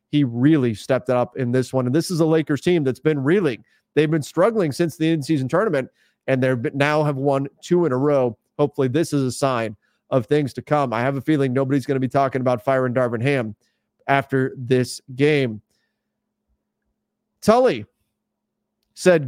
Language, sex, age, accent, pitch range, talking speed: English, male, 30-49, American, 130-170 Hz, 190 wpm